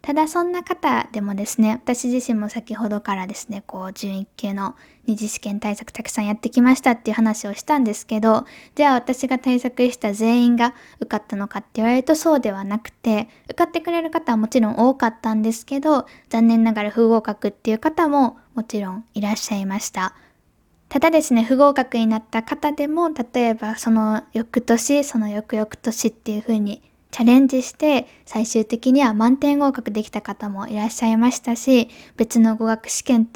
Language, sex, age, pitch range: Japanese, female, 10-29, 215-255 Hz